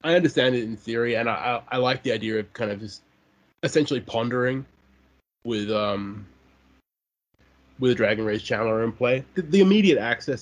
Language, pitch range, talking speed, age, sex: English, 100-120 Hz, 165 wpm, 20-39, male